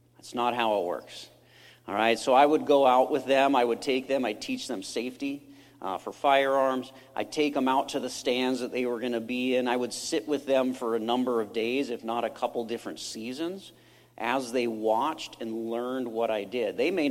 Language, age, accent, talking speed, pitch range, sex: English, 50-69, American, 230 wpm, 115-140 Hz, male